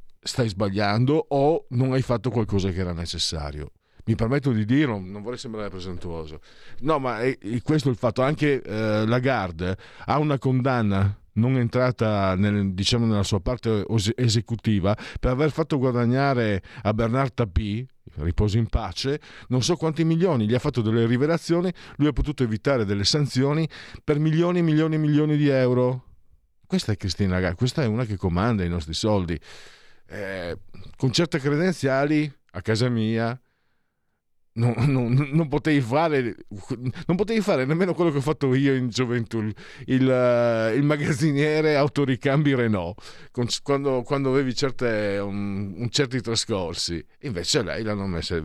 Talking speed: 160 wpm